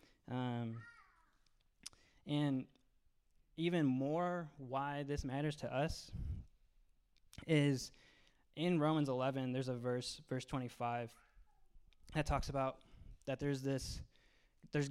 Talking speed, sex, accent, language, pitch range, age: 100 wpm, male, American, English, 125-150 Hz, 20-39